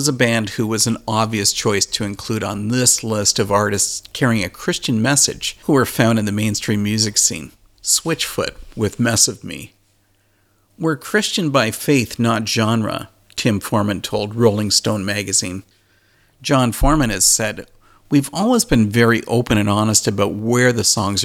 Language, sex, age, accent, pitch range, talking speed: English, male, 50-69, American, 105-130 Hz, 165 wpm